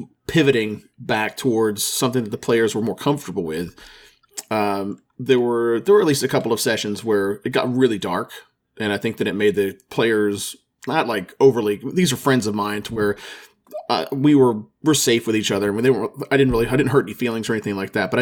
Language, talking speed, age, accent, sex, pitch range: English, 230 wpm, 30-49, American, male, 105-130 Hz